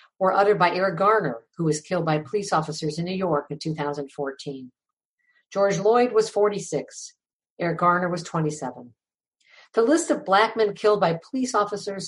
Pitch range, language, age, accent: 150-210 Hz, English, 50-69, American